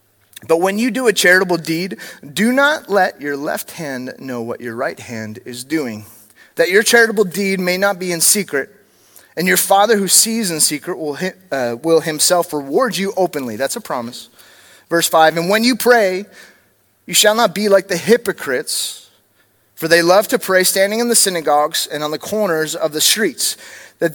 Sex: male